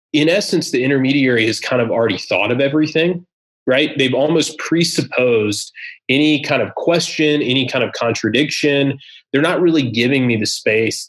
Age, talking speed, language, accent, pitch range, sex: 20-39, 160 wpm, English, American, 115-135 Hz, male